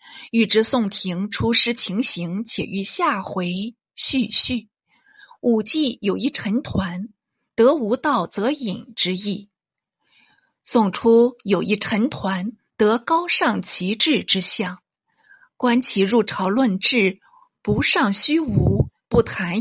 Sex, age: female, 50-69